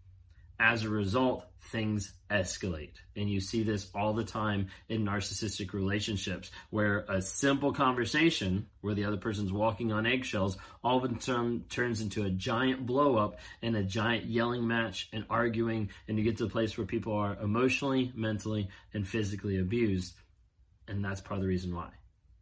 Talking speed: 170 wpm